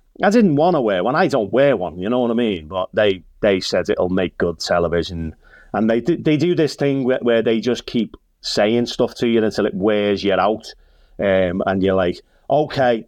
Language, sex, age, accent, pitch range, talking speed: English, male, 30-49, British, 115-150 Hz, 215 wpm